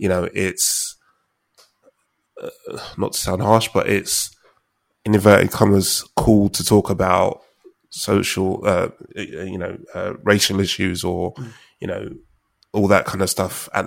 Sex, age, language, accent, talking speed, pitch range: male, 20-39, English, British, 145 wpm, 95-105 Hz